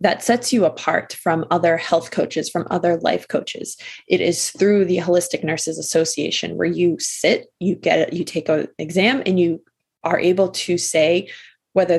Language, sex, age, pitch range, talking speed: English, female, 20-39, 165-195 Hz, 180 wpm